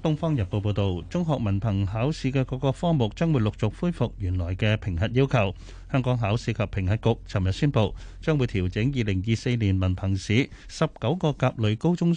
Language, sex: Chinese, male